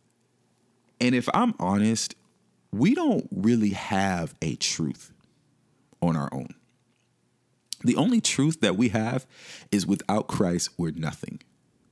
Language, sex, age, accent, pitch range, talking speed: English, male, 40-59, American, 95-155 Hz, 120 wpm